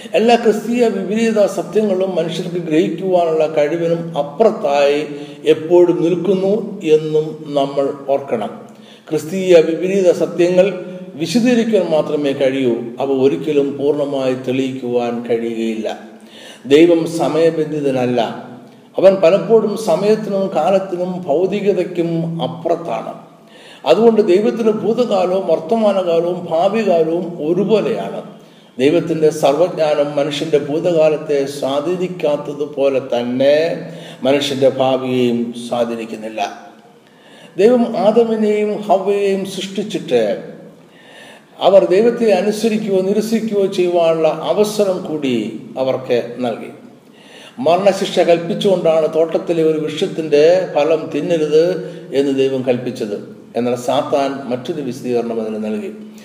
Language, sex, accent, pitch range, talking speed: Malayalam, male, native, 145-195 Hz, 80 wpm